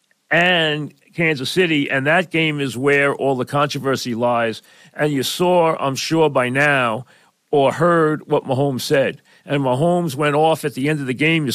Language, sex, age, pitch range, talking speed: English, male, 40-59, 125-155 Hz, 180 wpm